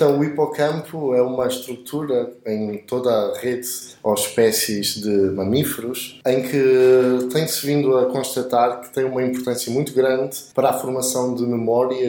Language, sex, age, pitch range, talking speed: Portuguese, male, 20-39, 115-140 Hz, 155 wpm